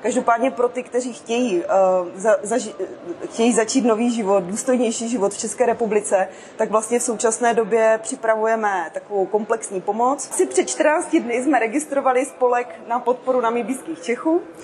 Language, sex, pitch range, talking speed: Czech, female, 205-235 Hz, 140 wpm